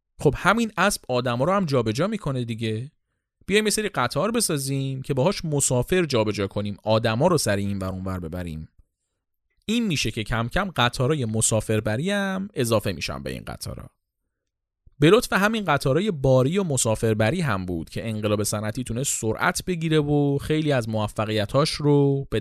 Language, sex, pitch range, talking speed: Persian, male, 110-160 Hz, 160 wpm